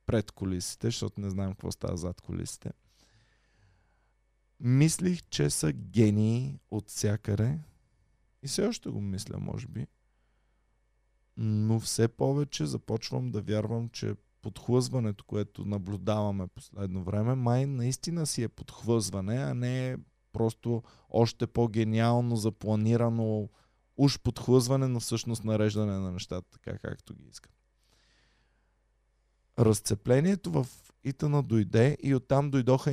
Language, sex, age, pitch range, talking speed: Bulgarian, male, 20-39, 105-130 Hz, 115 wpm